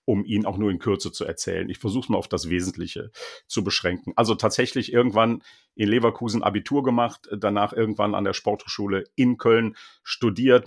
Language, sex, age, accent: German, male, 50-69, German